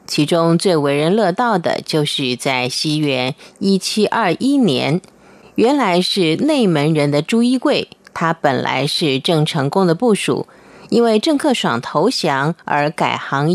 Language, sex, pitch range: Chinese, female, 155-230 Hz